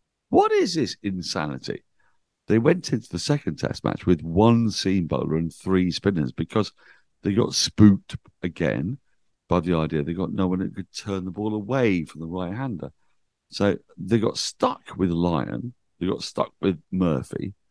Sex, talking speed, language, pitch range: male, 170 wpm, English, 75-100 Hz